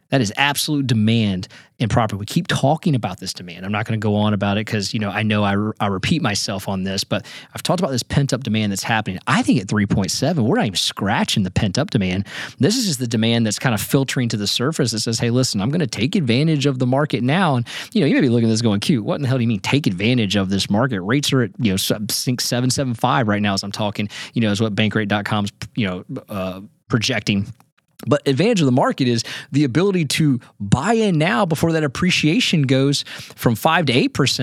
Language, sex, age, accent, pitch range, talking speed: English, male, 20-39, American, 110-150 Hz, 240 wpm